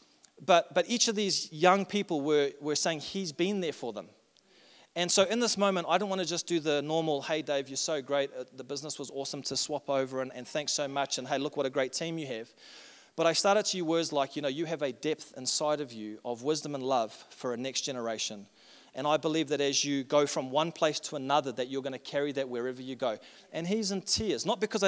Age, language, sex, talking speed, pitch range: 30-49, English, male, 255 wpm, 140-175 Hz